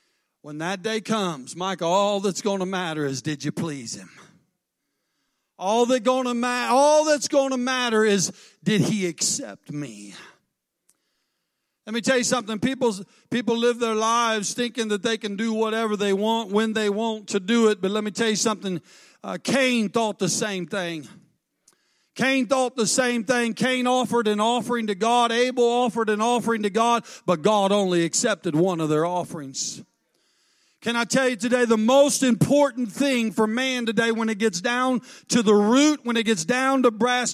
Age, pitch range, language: 50-69, 195-245 Hz, English